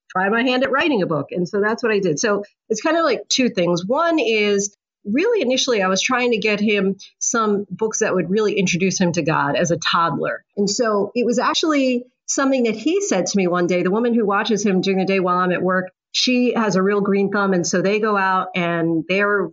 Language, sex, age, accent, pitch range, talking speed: English, female, 40-59, American, 195-250 Hz, 245 wpm